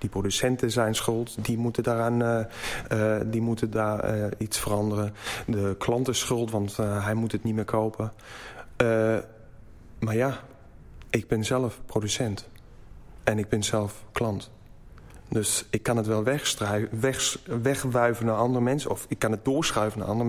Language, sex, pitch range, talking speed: Dutch, male, 105-120 Hz, 165 wpm